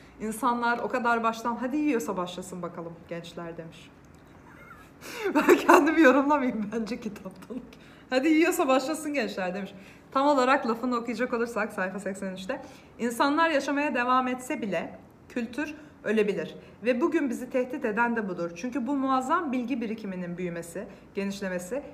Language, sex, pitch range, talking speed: Turkish, female, 190-260 Hz, 130 wpm